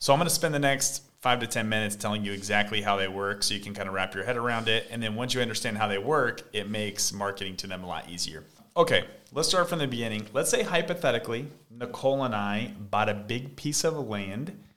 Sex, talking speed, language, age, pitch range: male, 245 wpm, English, 30-49, 105-135 Hz